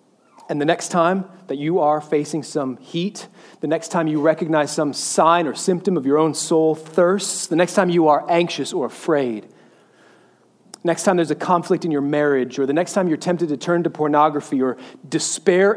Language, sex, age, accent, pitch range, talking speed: English, male, 30-49, American, 155-200 Hz, 200 wpm